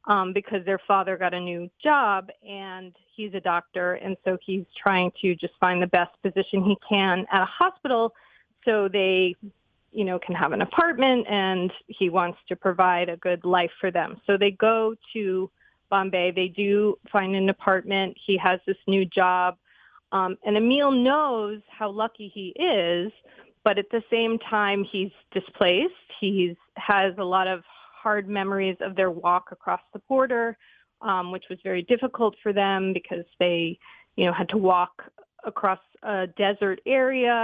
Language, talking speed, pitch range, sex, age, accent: English, 170 wpm, 185-220 Hz, female, 30-49, American